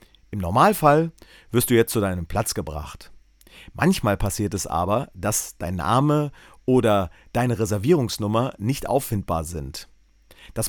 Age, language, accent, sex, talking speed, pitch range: 40-59, German, German, male, 130 wpm, 90-135 Hz